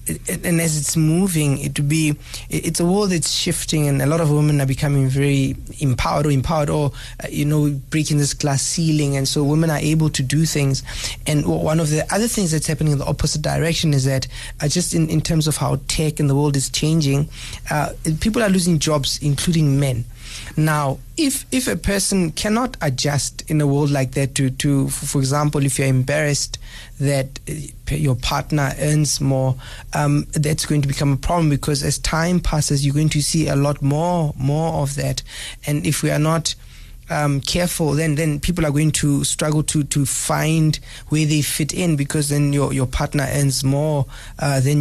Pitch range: 140-155 Hz